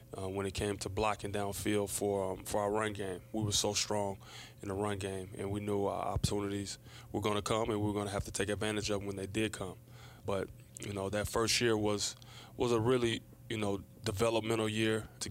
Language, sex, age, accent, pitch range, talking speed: English, male, 20-39, American, 100-110 Hz, 235 wpm